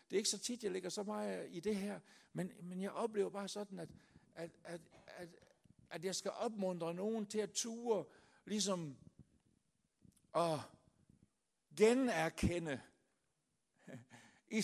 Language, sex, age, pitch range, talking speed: Danish, male, 60-79, 170-210 Hz, 140 wpm